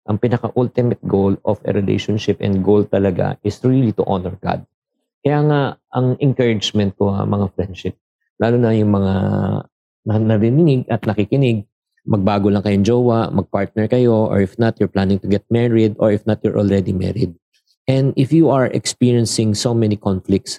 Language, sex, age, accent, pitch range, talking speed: Filipino, male, 50-69, native, 100-120 Hz, 165 wpm